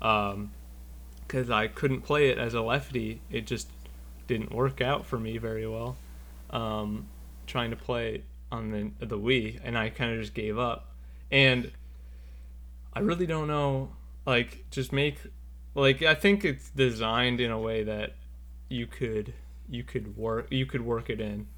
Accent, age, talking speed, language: American, 20-39, 165 wpm, English